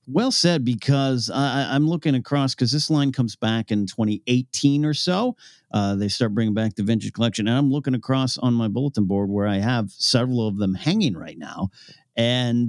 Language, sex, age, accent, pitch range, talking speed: English, male, 40-59, American, 115-150 Hz, 200 wpm